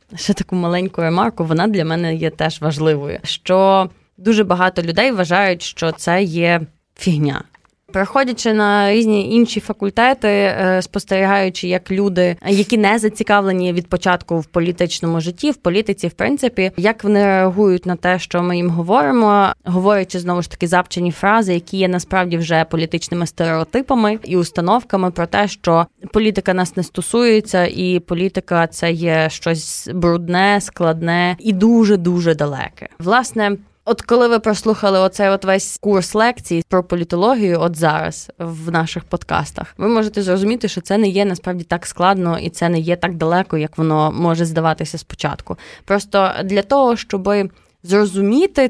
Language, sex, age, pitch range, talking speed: Ukrainian, female, 20-39, 170-205 Hz, 150 wpm